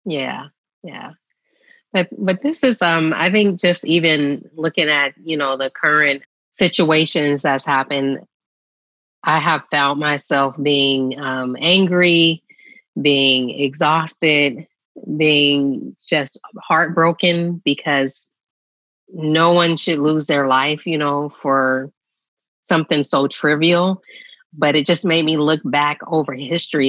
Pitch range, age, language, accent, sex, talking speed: 140-165 Hz, 30-49, English, American, female, 120 wpm